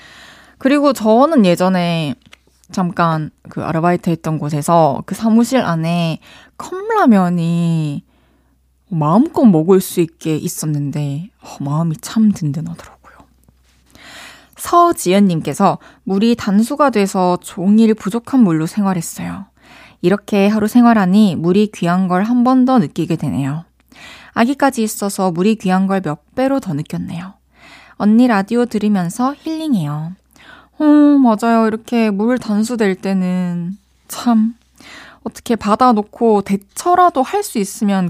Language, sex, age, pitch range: Korean, female, 20-39, 175-245 Hz